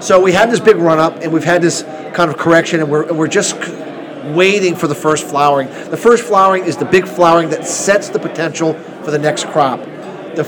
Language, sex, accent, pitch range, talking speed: English, male, American, 150-180 Hz, 220 wpm